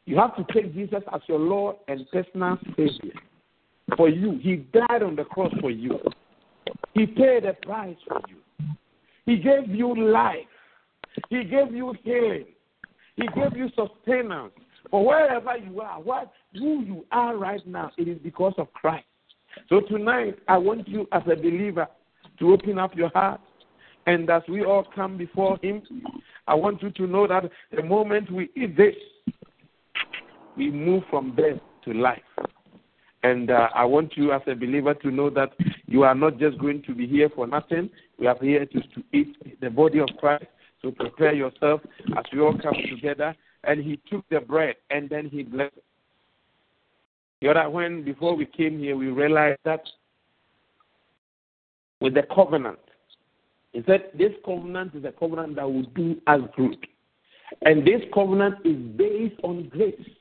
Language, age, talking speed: English, 50-69, 170 wpm